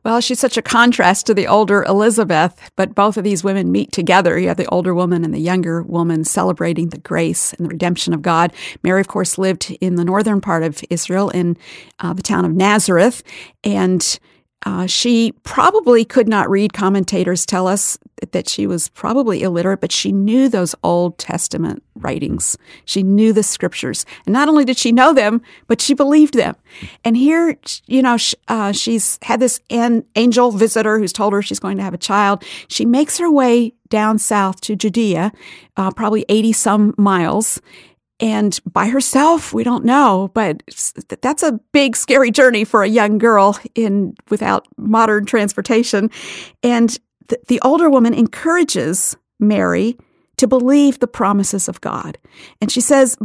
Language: English